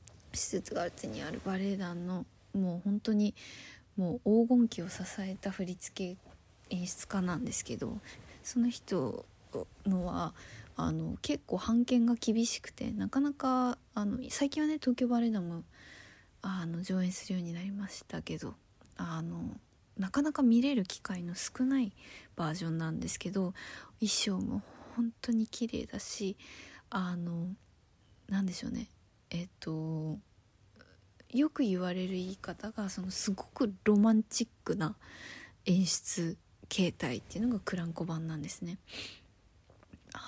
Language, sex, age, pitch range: Japanese, female, 20-39, 170-225 Hz